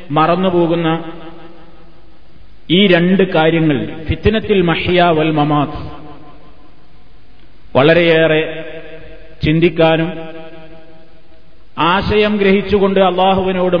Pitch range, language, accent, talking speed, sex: 160-190 Hz, Malayalam, native, 50 wpm, male